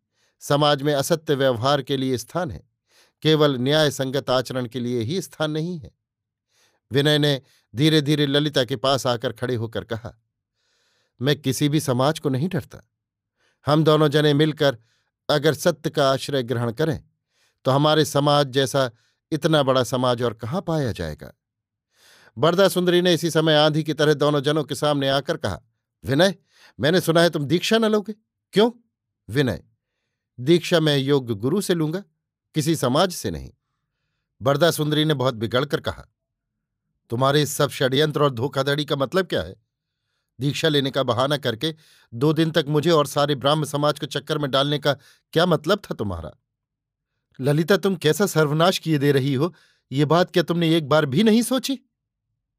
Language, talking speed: Hindi, 165 wpm